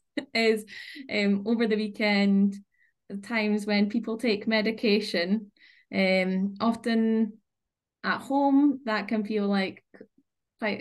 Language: English